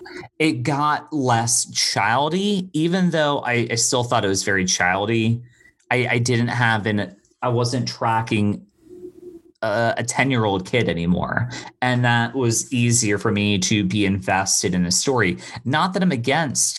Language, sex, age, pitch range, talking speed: English, male, 30-49, 105-145 Hz, 160 wpm